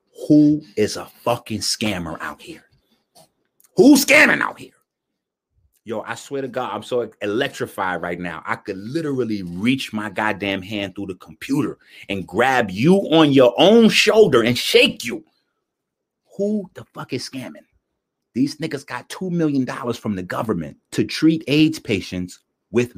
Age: 30-49